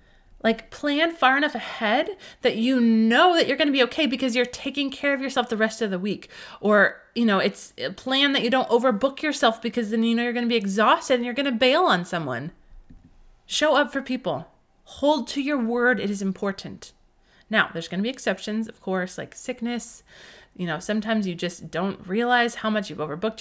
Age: 20-39